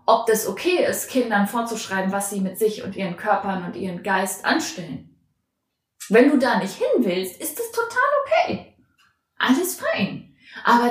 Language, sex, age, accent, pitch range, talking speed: German, female, 20-39, German, 210-285 Hz, 165 wpm